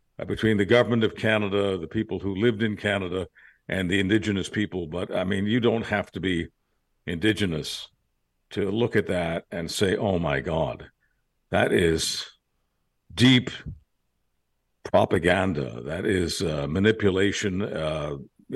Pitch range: 90-110 Hz